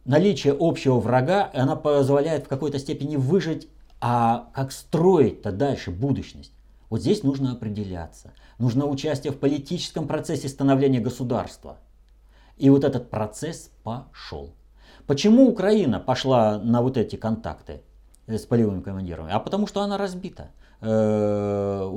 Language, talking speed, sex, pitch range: Russian, 125 wpm, male, 95-140 Hz